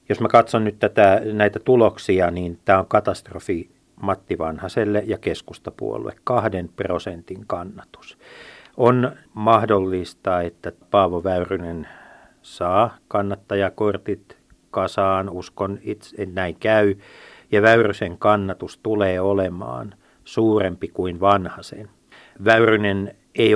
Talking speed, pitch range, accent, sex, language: 100 wpm, 90-105 Hz, native, male, Finnish